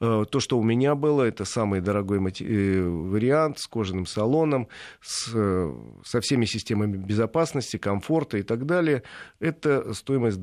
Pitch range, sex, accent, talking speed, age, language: 105-130 Hz, male, native, 125 wpm, 40-59, Russian